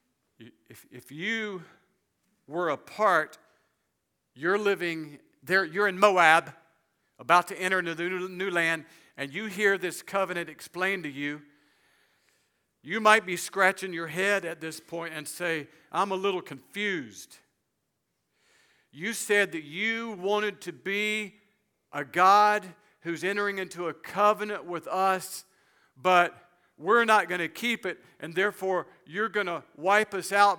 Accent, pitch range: American, 165-205 Hz